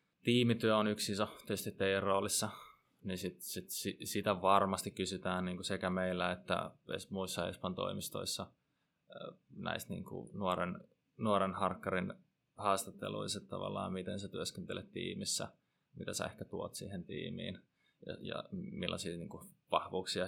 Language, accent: Finnish, native